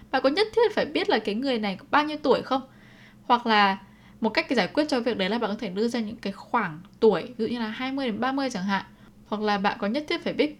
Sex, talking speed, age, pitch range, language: female, 275 wpm, 10-29, 195-235 Hz, Vietnamese